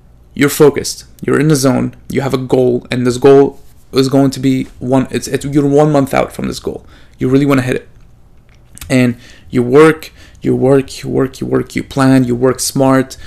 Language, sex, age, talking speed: English, male, 20-39, 215 wpm